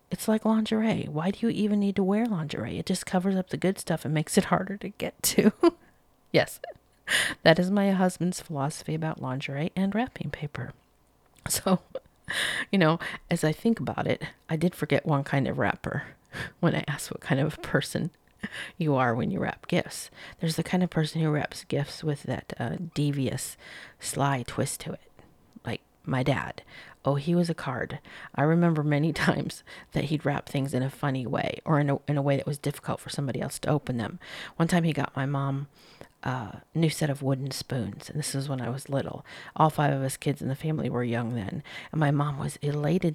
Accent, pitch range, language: American, 135-175 Hz, English